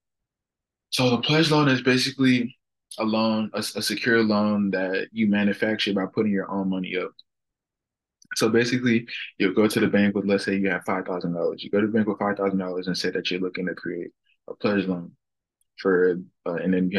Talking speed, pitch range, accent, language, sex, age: 200 wpm, 95-105 Hz, American, English, male, 20-39